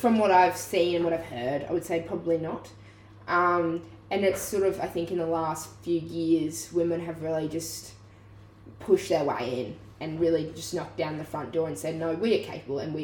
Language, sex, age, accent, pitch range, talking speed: English, female, 10-29, Australian, 110-180 Hz, 225 wpm